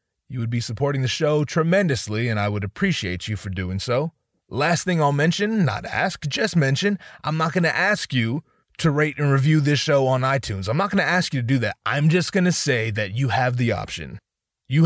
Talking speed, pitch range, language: 230 wpm, 115-155 Hz, English